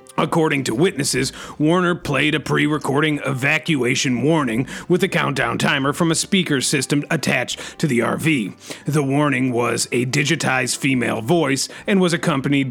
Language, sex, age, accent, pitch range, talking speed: English, male, 30-49, American, 125-155 Hz, 145 wpm